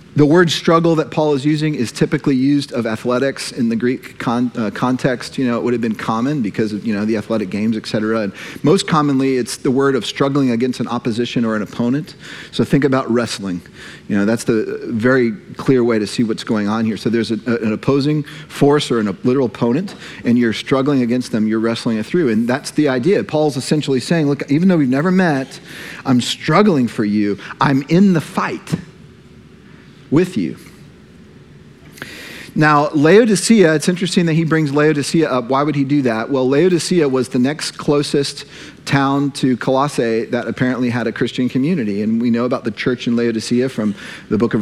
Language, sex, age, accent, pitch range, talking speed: English, male, 40-59, American, 120-150 Hz, 200 wpm